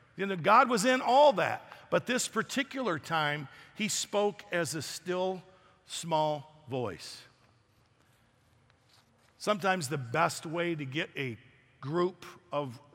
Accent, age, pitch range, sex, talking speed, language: American, 50-69, 125-175 Hz, male, 125 wpm, English